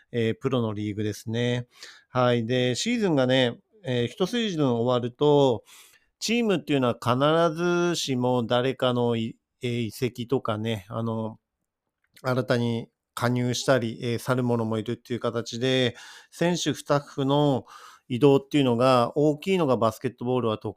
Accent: native